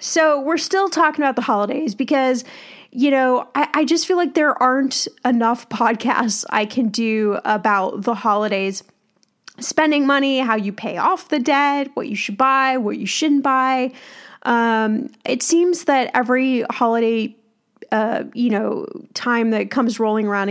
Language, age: English, 10-29